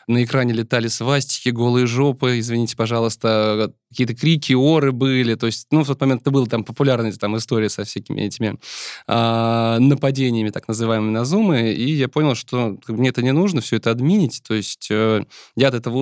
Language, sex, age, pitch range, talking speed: Russian, male, 20-39, 115-140 Hz, 180 wpm